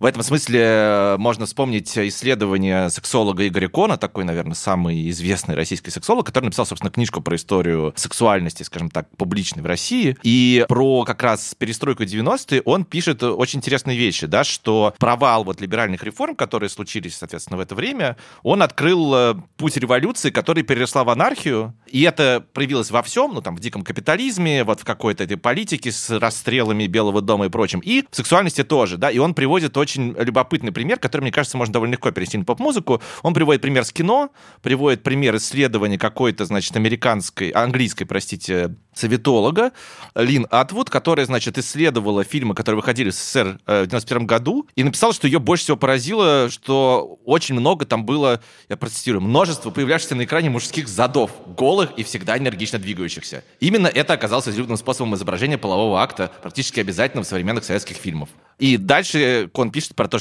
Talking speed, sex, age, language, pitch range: 175 wpm, male, 30-49, Russian, 105-140 Hz